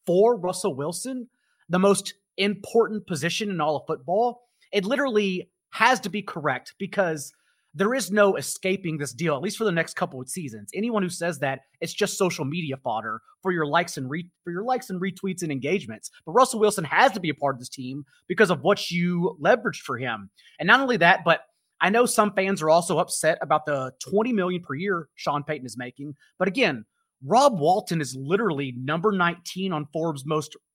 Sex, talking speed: male, 205 wpm